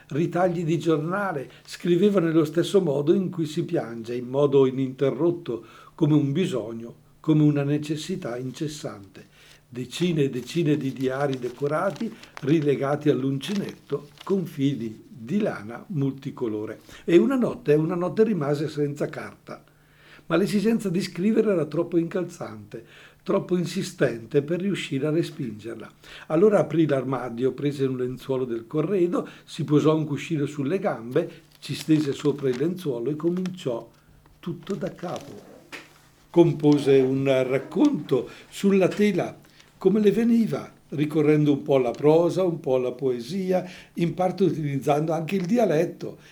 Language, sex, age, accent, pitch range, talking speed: Italian, male, 60-79, native, 140-175 Hz, 130 wpm